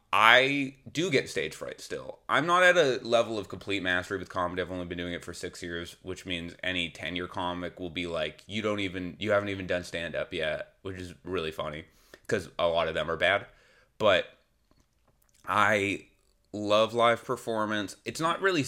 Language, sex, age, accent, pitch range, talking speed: English, male, 20-39, American, 90-115 Hz, 195 wpm